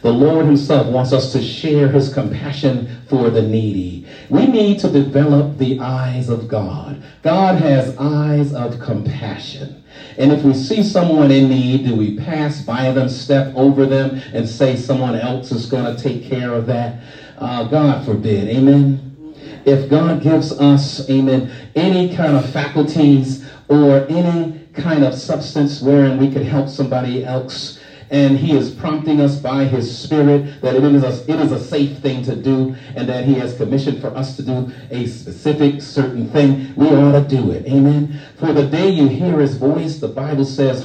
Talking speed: 180 wpm